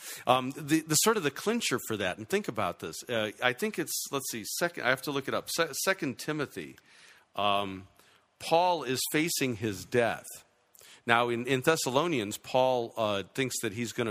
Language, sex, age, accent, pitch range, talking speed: English, male, 50-69, American, 105-140 Hz, 185 wpm